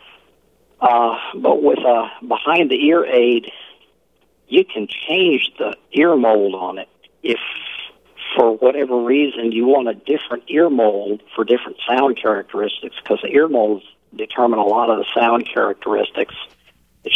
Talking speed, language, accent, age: 145 wpm, English, American, 50-69